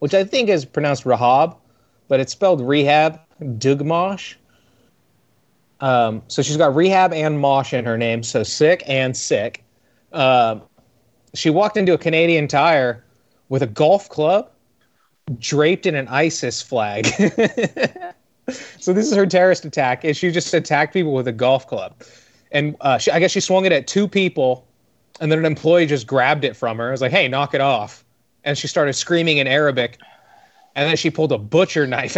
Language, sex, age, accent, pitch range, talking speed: English, male, 30-49, American, 125-155 Hz, 175 wpm